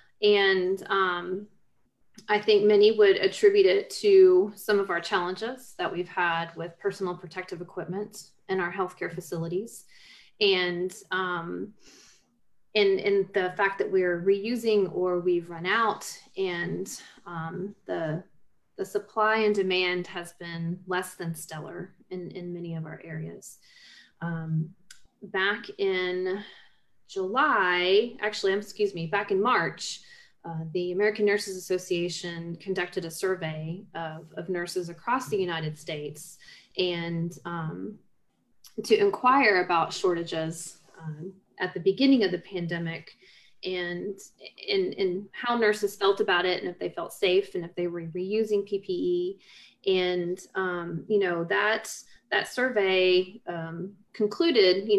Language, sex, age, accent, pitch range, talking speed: English, female, 30-49, American, 175-210 Hz, 135 wpm